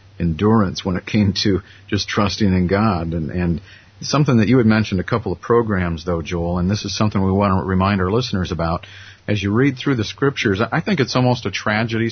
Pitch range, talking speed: 95-115 Hz, 225 wpm